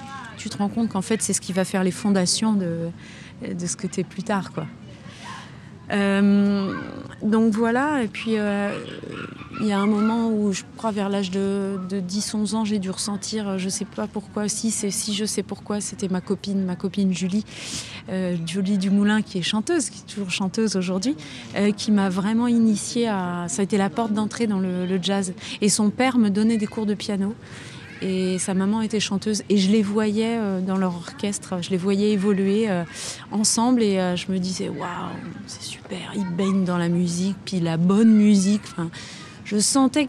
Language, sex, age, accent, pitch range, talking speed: French, female, 30-49, French, 190-220 Hz, 200 wpm